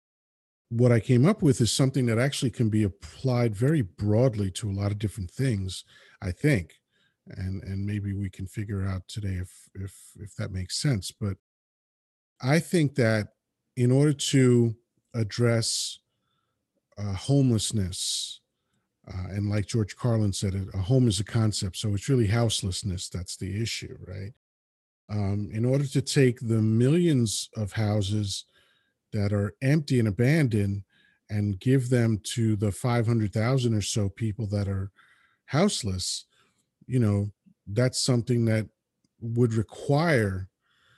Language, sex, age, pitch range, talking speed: English, male, 40-59, 100-125 Hz, 140 wpm